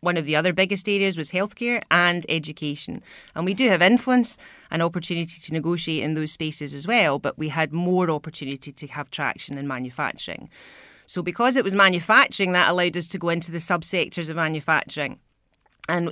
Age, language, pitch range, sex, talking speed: 30-49, English, 145-175 Hz, female, 185 wpm